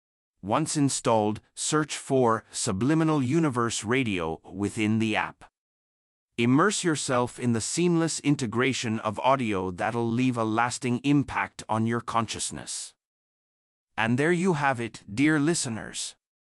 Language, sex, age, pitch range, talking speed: English, male, 30-49, 105-140 Hz, 120 wpm